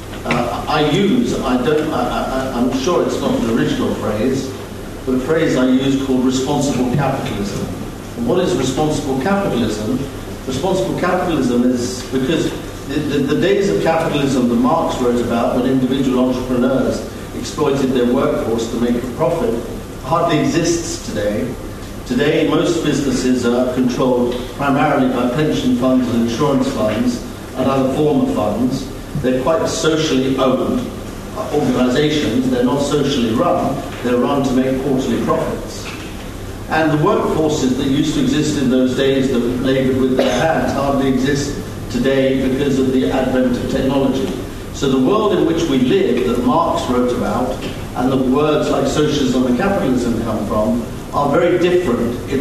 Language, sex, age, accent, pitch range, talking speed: English, male, 50-69, British, 125-140 Hz, 150 wpm